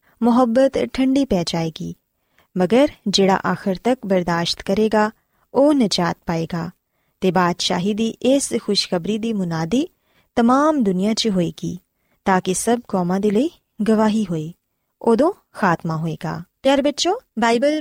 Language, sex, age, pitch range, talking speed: Punjabi, female, 20-39, 190-265 Hz, 140 wpm